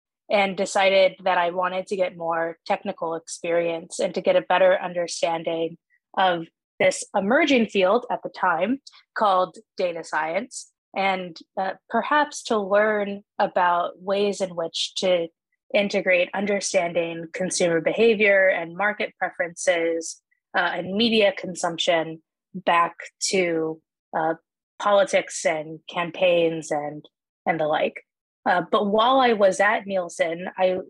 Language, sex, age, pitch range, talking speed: English, female, 20-39, 175-205 Hz, 125 wpm